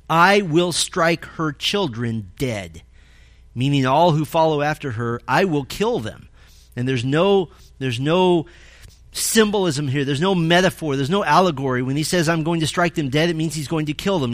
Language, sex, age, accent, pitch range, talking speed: English, male, 40-59, American, 125-170 Hz, 190 wpm